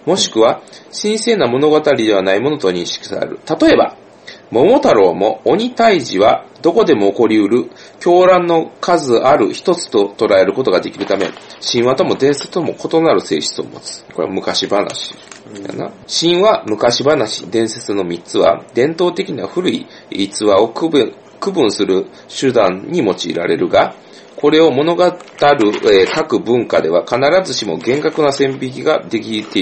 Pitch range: 115-165 Hz